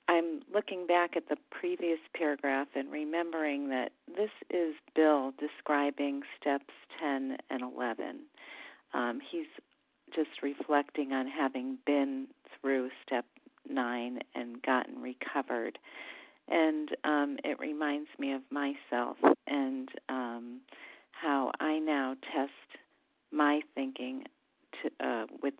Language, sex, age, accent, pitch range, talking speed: English, female, 50-69, American, 130-170 Hz, 115 wpm